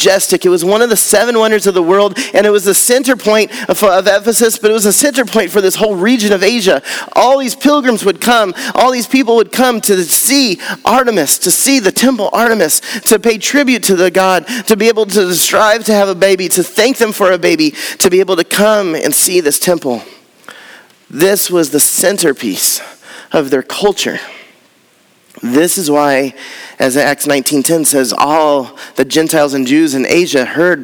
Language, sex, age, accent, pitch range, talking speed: English, male, 30-49, American, 165-225 Hz, 195 wpm